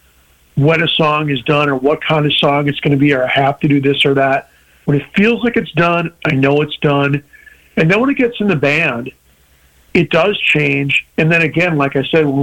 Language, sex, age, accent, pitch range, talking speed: English, male, 40-59, American, 125-155 Hz, 240 wpm